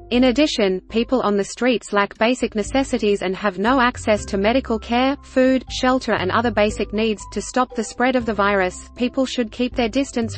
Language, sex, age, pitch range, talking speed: English, female, 30-49, 200-250 Hz, 195 wpm